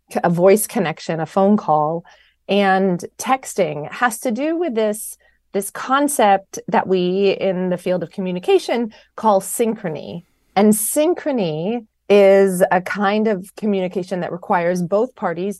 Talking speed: 135 wpm